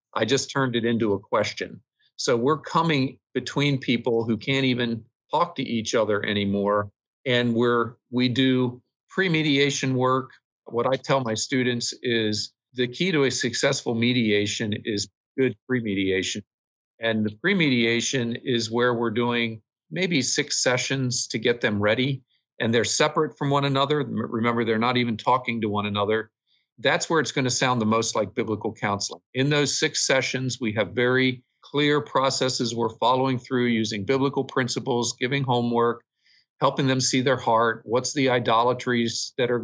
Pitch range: 115-130 Hz